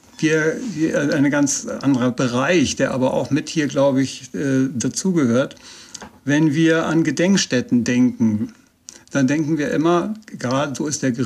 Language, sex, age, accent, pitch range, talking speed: German, male, 60-79, German, 130-160 Hz, 145 wpm